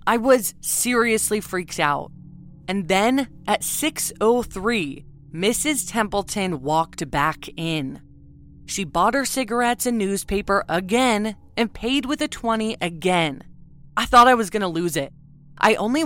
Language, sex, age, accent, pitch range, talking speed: English, female, 20-39, American, 155-220 Hz, 140 wpm